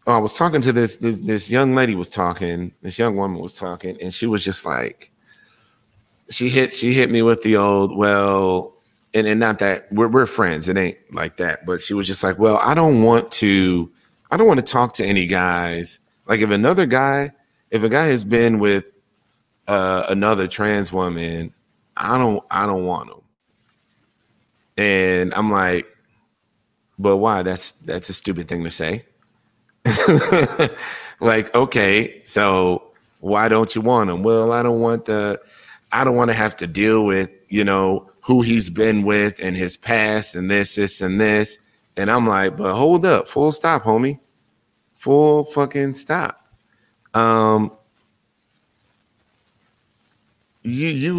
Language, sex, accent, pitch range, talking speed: English, male, American, 95-120 Hz, 165 wpm